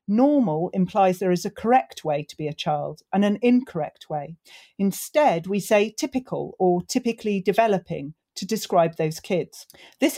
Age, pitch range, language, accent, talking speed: 40-59, 165-215 Hz, English, British, 160 wpm